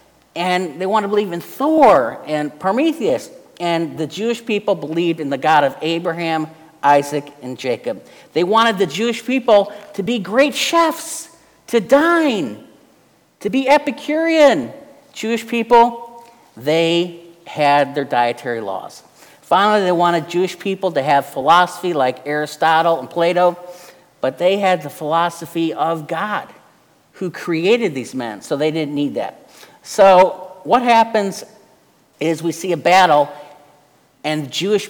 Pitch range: 145-205 Hz